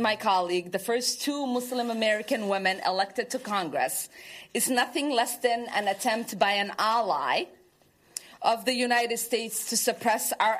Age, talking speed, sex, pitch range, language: 40-59, 155 wpm, female, 195-245 Hz, English